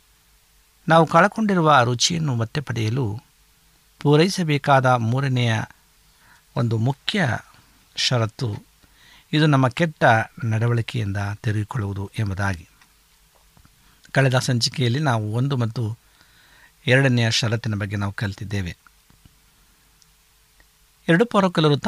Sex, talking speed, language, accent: male, 80 wpm, Kannada, native